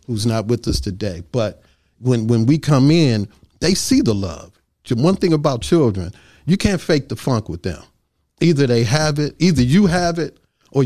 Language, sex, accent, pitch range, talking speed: English, male, American, 105-140 Hz, 195 wpm